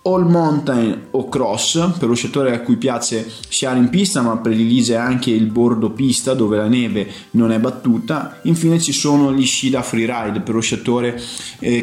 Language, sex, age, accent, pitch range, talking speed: Italian, male, 20-39, native, 110-135 Hz, 185 wpm